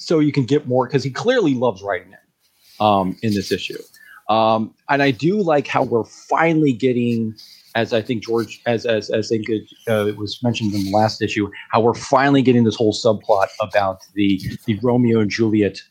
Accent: American